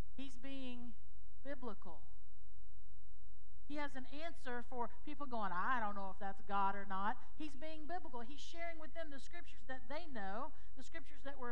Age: 50-69